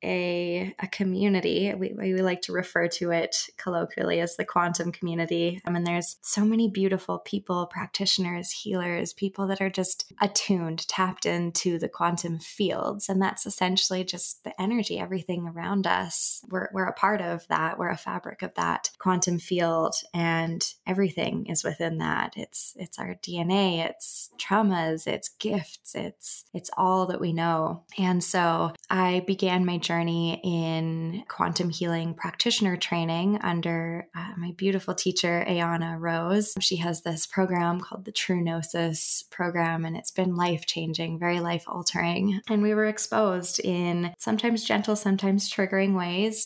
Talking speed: 155 wpm